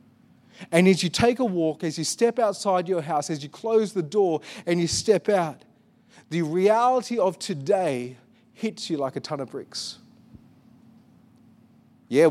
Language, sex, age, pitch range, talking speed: English, male, 30-49, 175-235 Hz, 160 wpm